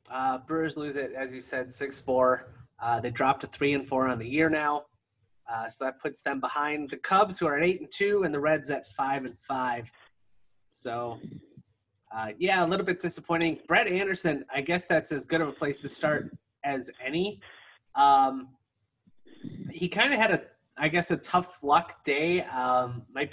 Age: 30-49